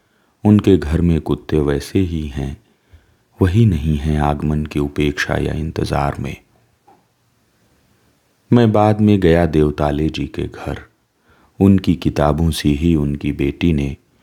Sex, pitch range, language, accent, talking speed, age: male, 75-90 Hz, Hindi, native, 130 wpm, 40-59